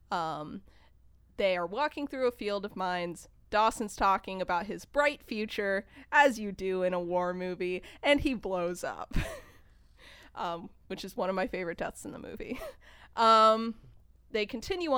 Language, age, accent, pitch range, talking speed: English, 20-39, American, 180-225 Hz, 160 wpm